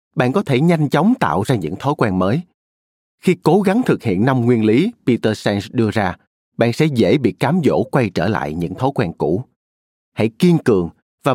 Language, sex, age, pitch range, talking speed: Vietnamese, male, 30-49, 105-170 Hz, 210 wpm